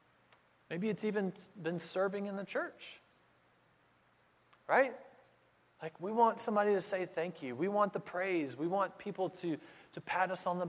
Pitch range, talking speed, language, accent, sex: 165-220 Hz, 170 wpm, English, American, male